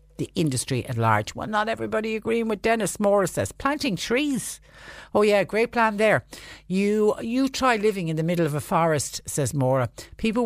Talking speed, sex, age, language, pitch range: 185 wpm, female, 60-79, English, 130-175 Hz